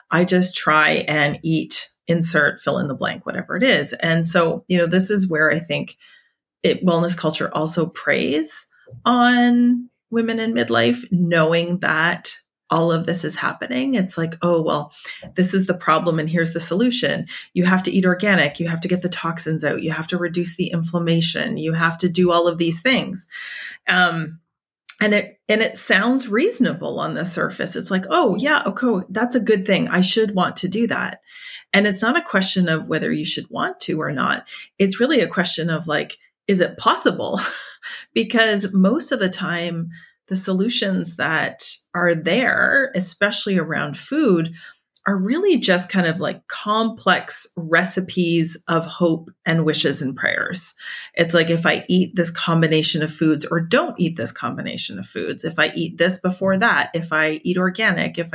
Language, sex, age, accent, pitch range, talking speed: English, female, 30-49, American, 165-205 Hz, 180 wpm